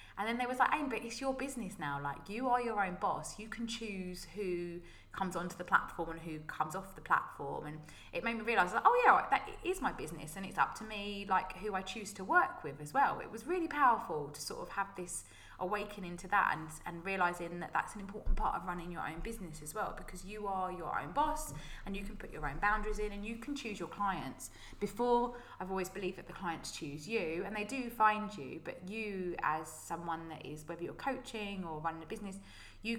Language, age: English, 20-39